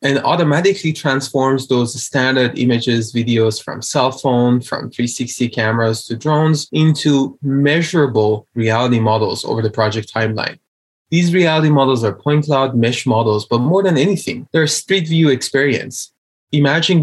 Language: English